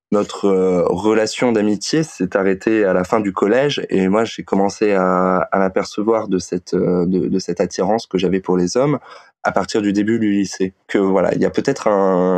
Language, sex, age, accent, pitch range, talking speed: French, male, 20-39, French, 95-110 Hz, 200 wpm